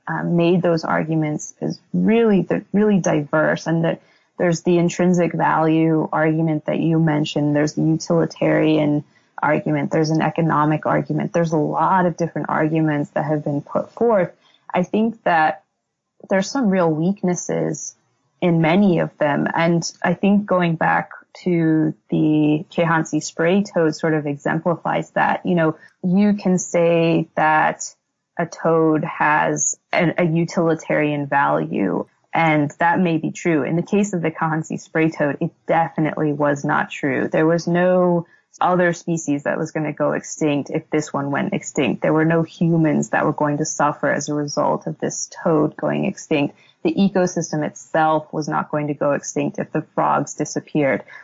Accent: American